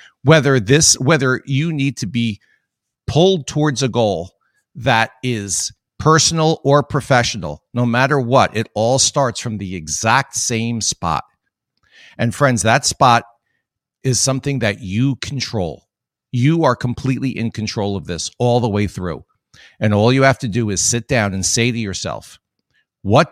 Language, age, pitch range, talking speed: English, 50-69, 110-135 Hz, 155 wpm